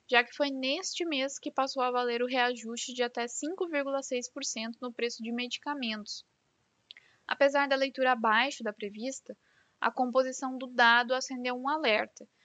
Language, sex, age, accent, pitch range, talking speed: Portuguese, female, 10-29, Brazilian, 235-280 Hz, 150 wpm